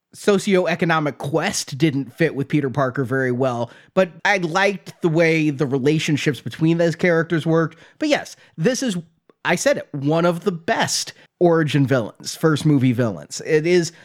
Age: 30-49